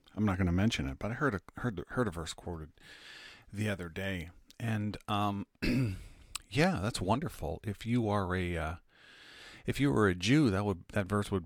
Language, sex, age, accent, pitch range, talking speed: English, male, 40-59, American, 90-115 Hz, 205 wpm